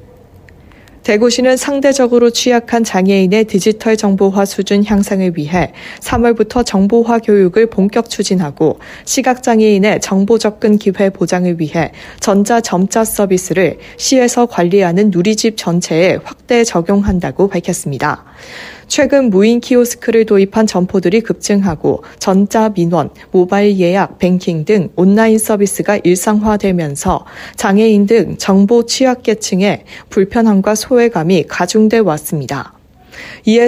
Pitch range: 185-225 Hz